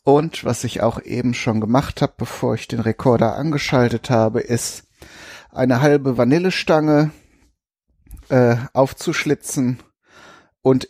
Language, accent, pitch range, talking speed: German, German, 110-150 Hz, 115 wpm